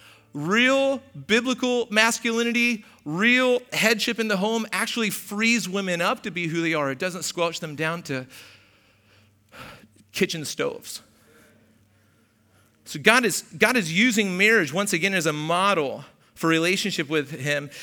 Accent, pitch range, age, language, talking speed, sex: American, 145-200 Hz, 40-59, English, 140 wpm, male